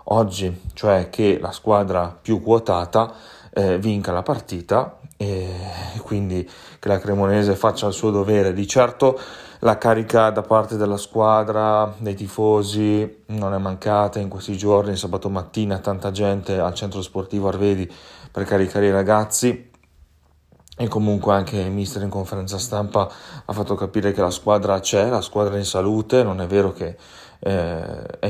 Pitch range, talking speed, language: 95-110 Hz, 155 wpm, Italian